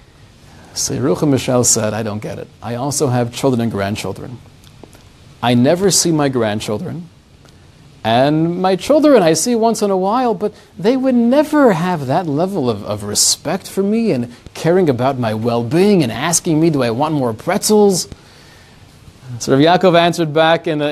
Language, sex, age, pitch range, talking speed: English, male, 40-59, 130-195 Hz, 170 wpm